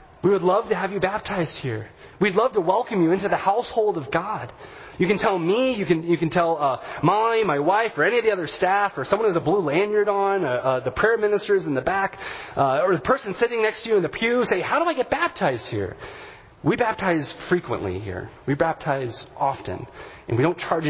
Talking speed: 235 wpm